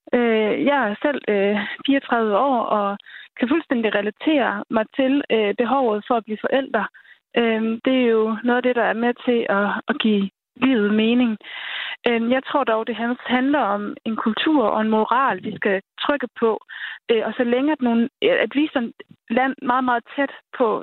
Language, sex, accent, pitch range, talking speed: Danish, female, native, 225-275 Hz, 165 wpm